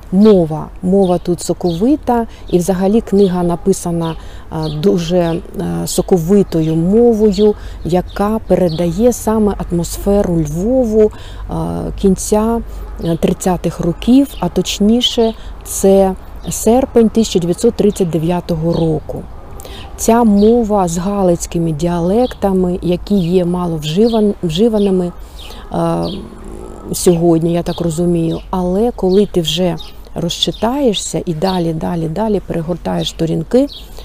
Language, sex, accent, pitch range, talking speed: Ukrainian, female, native, 170-210 Hz, 80 wpm